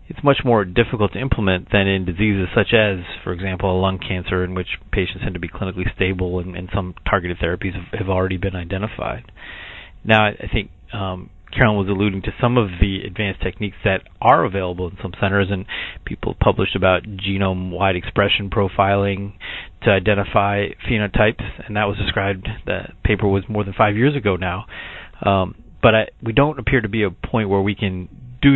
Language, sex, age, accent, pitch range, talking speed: English, male, 30-49, American, 95-110 Hz, 190 wpm